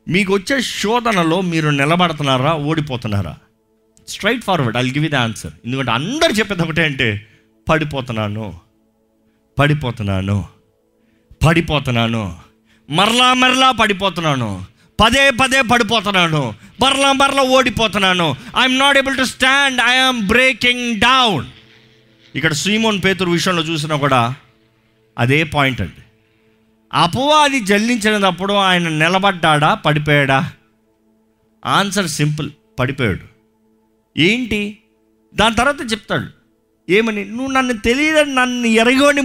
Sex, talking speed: male, 100 wpm